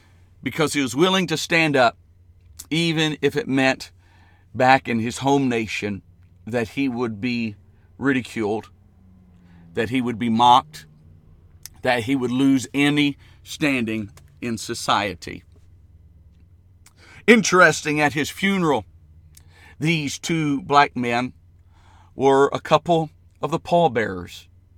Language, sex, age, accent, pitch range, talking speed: English, male, 50-69, American, 90-150 Hz, 115 wpm